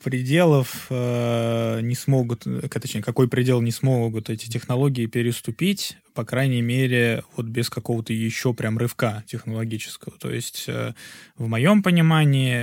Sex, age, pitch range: male, 20-39, 115-140 Hz